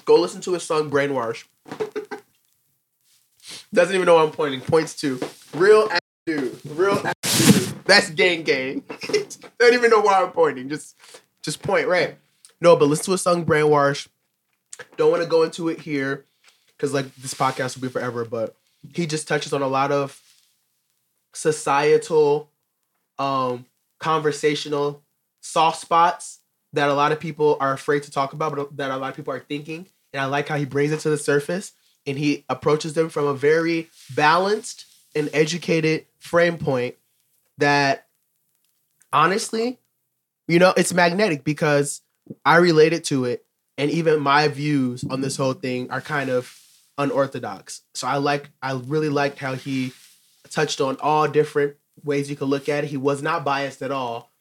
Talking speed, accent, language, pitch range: 170 wpm, American, English, 140-165 Hz